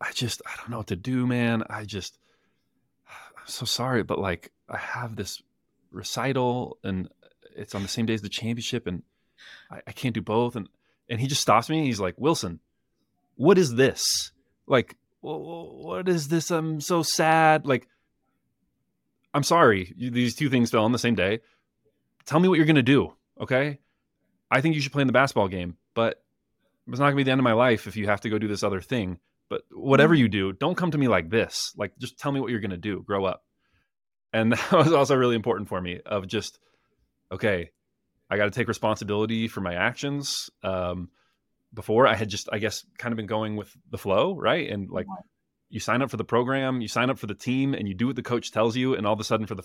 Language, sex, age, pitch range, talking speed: English, male, 20-39, 100-130 Hz, 225 wpm